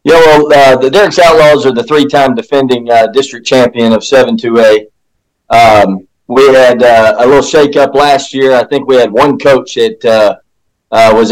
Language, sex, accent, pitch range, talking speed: English, male, American, 115-135 Hz, 185 wpm